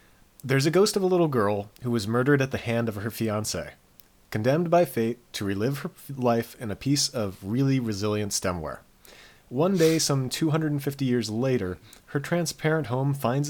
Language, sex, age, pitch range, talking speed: English, male, 30-49, 105-140 Hz, 180 wpm